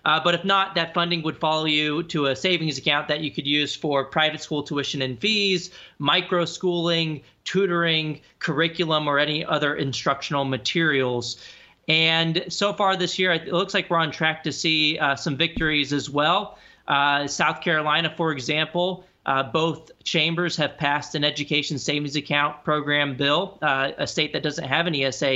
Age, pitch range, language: 30-49, 140-165 Hz, English